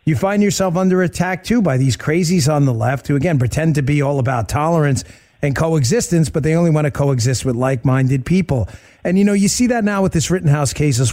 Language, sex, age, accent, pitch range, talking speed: English, male, 40-59, American, 145-195 Hz, 235 wpm